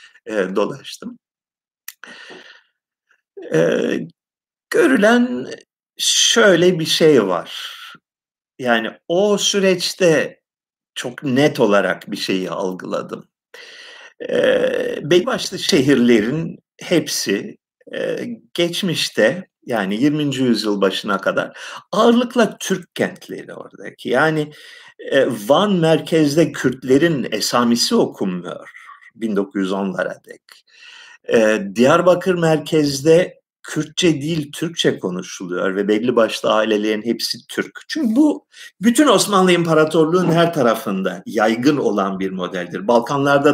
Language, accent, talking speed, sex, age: Turkish, native, 90 wpm, male, 50-69